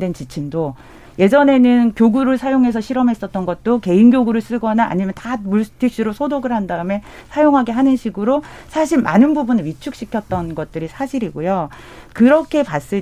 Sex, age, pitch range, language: female, 40-59, 170-255 Hz, Korean